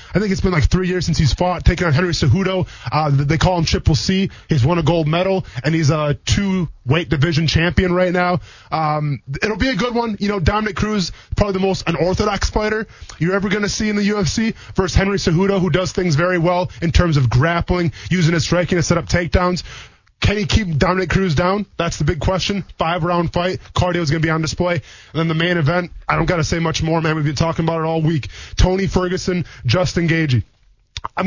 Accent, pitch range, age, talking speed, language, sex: American, 155-190 Hz, 20-39, 230 wpm, English, male